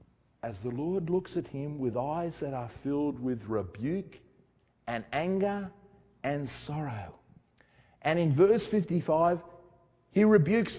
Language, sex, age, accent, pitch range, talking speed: English, male, 50-69, Australian, 130-200 Hz, 130 wpm